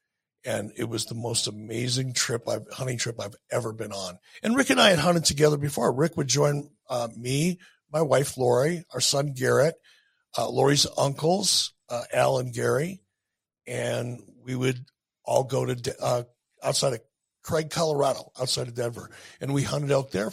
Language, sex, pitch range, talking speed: English, male, 115-155 Hz, 175 wpm